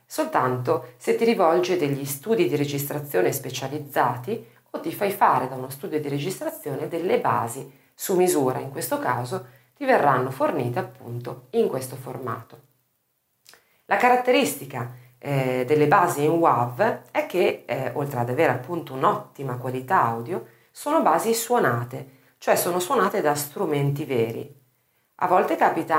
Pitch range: 130-185 Hz